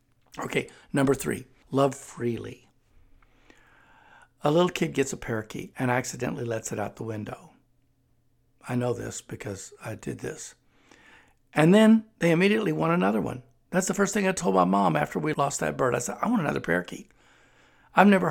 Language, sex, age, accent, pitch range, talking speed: English, male, 60-79, American, 120-160 Hz, 175 wpm